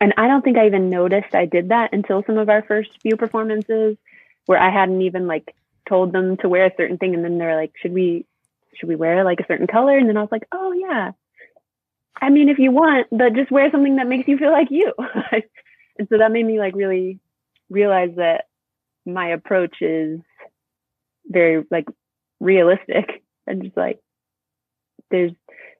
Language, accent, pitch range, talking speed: English, American, 170-225 Hz, 195 wpm